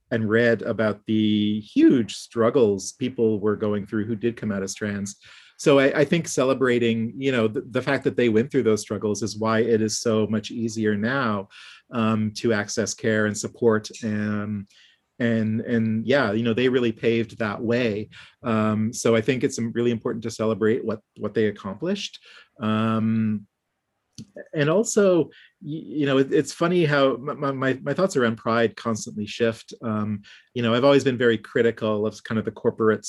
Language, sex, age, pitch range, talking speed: English, male, 40-59, 105-120 Hz, 180 wpm